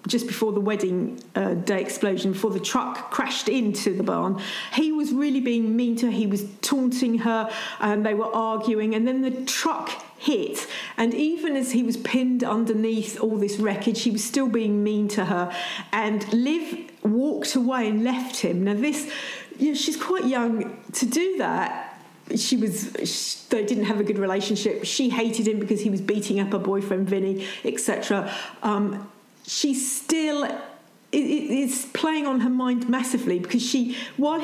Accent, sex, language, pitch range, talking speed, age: British, female, English, 210-260 Hz, 180 wpm, 40-59